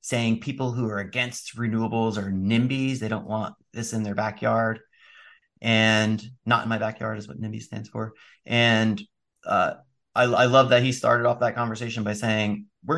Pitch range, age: 105-120 Hz, 30-49